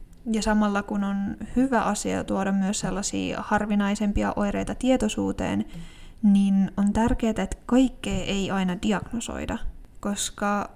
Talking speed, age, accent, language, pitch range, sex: 115 wpm, 20-39, native, Finnish, 190-220 Hz, female